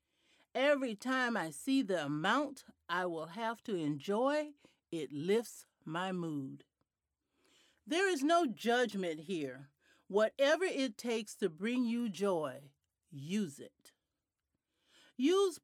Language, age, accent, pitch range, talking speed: English, 50-69, American, 170-250 Hz, 115 wpm